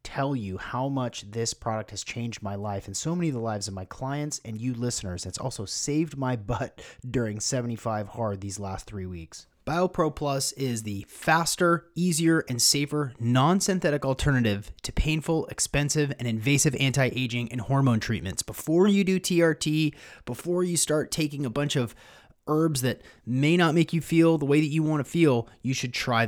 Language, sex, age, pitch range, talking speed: English, male, 30-49, 110-150 Hz, 185 wpm